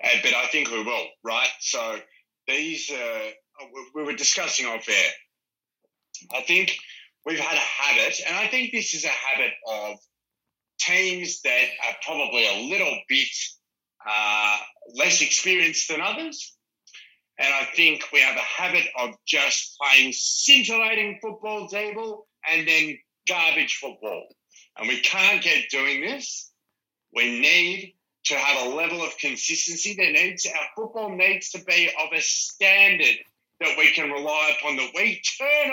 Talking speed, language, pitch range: 155 wpm, English, 155-215 Hz